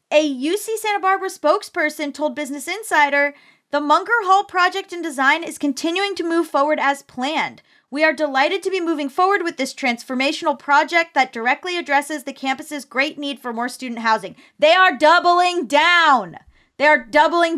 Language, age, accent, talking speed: English, 20-39, American, 170 wpm